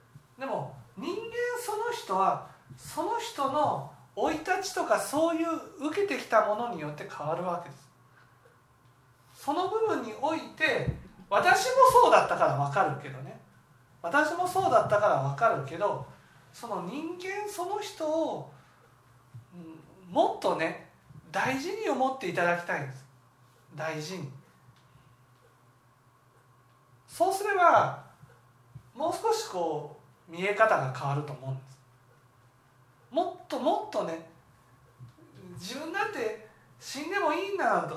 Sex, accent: male, native